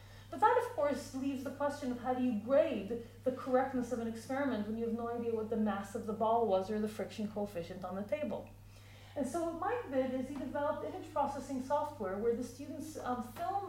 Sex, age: female, 30-49